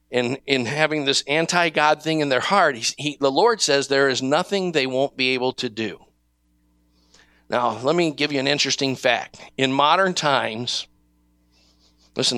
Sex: male